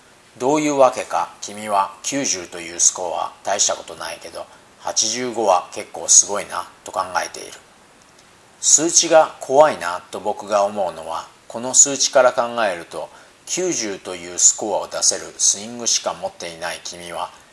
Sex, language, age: male, Japanese, 40-59